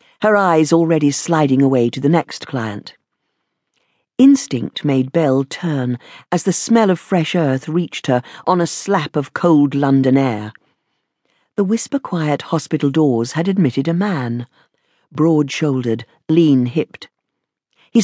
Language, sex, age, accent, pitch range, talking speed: English, female, 50-69, British, 135-195 Hz, 130 wpm